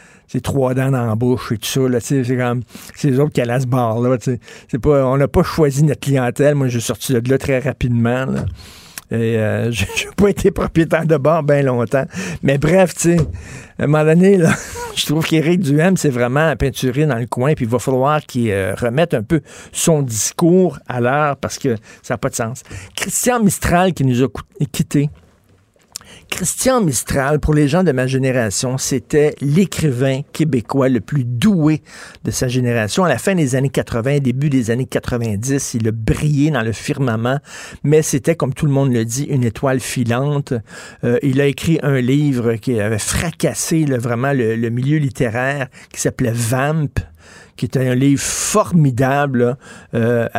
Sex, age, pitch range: male, 50-69, 120-150 Hz